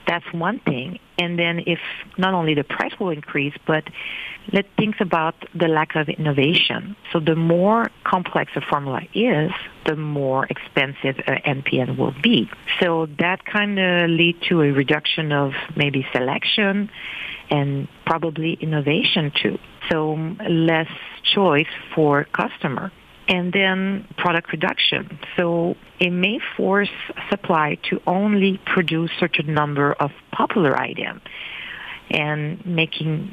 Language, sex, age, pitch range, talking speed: English, female, 50-69, 150-180 Hz, 130 wpm